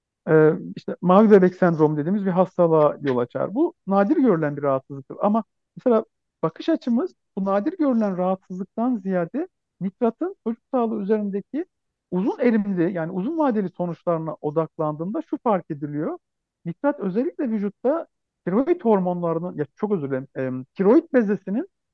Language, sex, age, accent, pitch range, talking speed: Turkish, male, 50-69, native, 160-235 Hz, 130 wpm